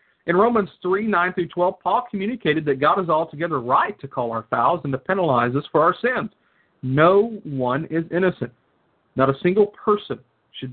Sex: male